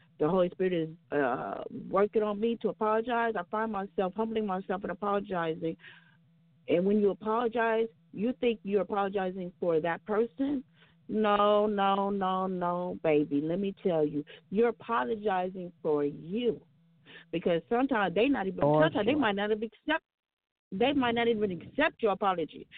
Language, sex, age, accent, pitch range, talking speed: English, female, 40-59, American, 180-235 Hz, 155 wpm